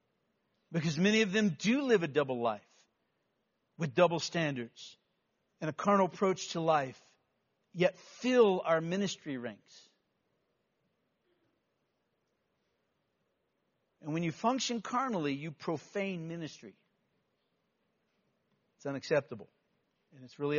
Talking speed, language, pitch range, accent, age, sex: 105 wpm, English, 155-210 Hz, American, 60-79, male